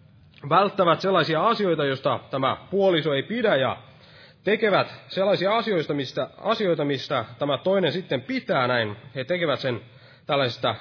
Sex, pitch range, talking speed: male, 135-190 Hz, 135 wpm